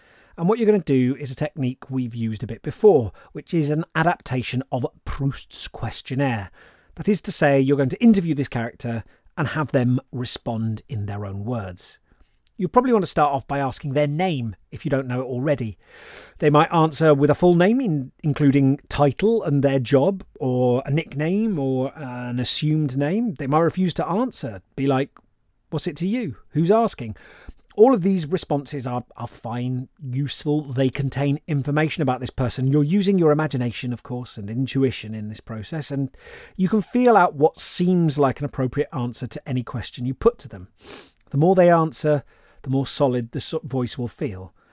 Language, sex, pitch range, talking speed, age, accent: English, male, 125-165 Hz, 190 wpm, 30-49, British